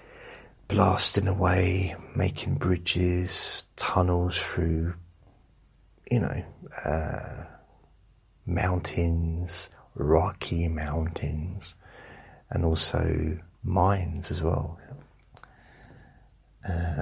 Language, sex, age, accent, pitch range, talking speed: English, male, 40-59, British, 85-105 Hz, 65 wpm